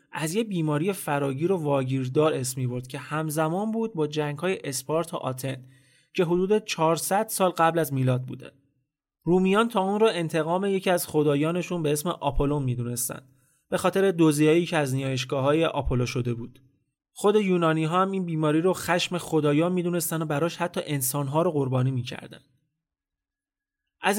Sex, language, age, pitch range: male, Persian, 30-49, 140-190 Hz